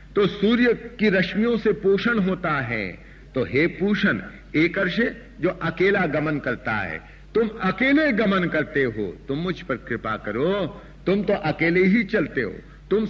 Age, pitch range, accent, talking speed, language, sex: 60-79, 145-210 Hz, native, 150 wpm, Hindi, male